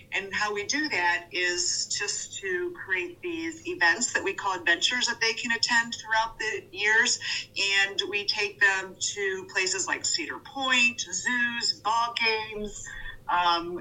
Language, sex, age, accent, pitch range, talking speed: English, female, 40-59, American, 185-235 Hz, 150 wpm